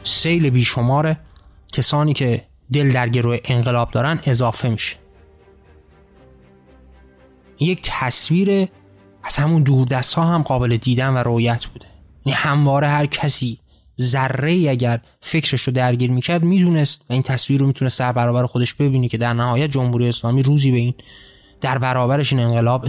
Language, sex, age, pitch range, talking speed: Persian, male, 20-39, 120-145 Hz, 140 wpm